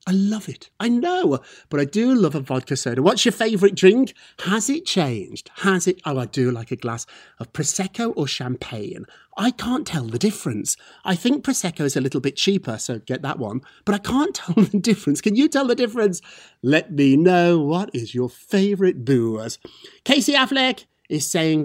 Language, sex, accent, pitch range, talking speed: English, male, British, 135-205 Hz, 195 wpm